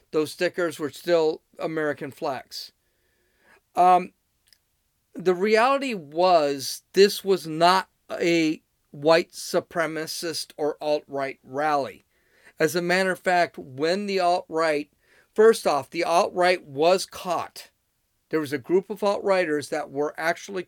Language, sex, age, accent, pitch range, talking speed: English, male, 40-59, American, 150-185 Hz, 120 wpm